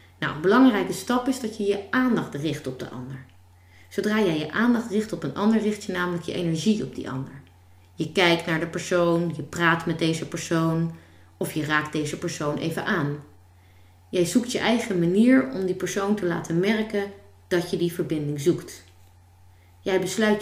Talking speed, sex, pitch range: 185 wpm, female, 135-210 Hz